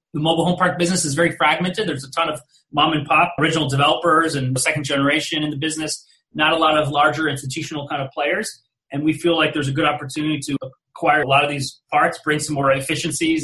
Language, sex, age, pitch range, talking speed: English, male, 30-49, 135-155 Hz, 230 wpm